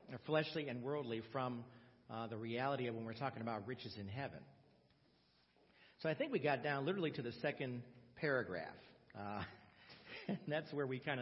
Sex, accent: male, American